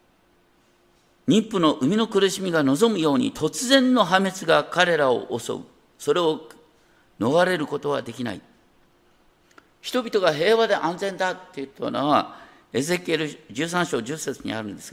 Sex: male